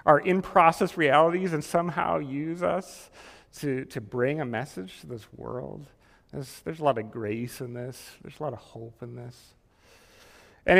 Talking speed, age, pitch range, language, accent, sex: 170 wpm, 40-59, 125-165 Hz, English, American, male